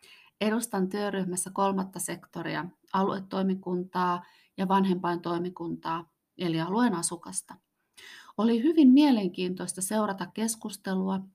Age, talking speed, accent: 30-49, 80 wpm, native